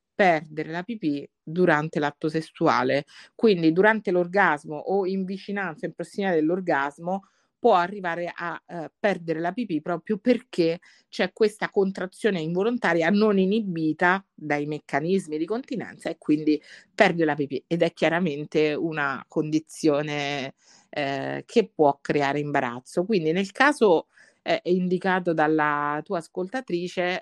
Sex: female